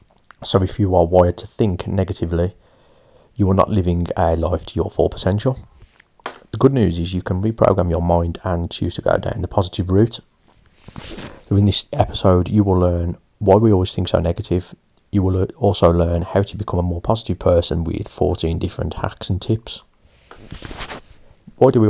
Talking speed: 185 wpm